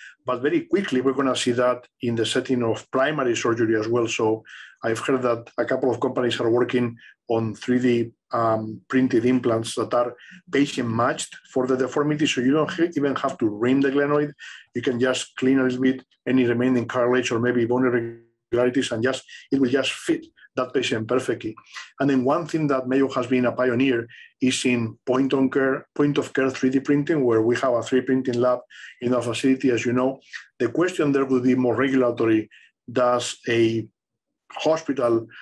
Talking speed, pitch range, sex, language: 185 wpm, 120-135 Hz, male, English